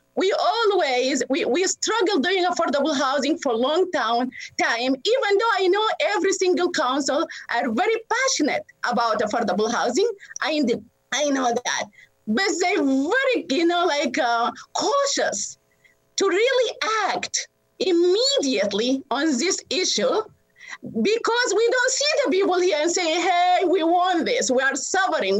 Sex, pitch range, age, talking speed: female, 265-370 Hz, 30-49, 145 wpm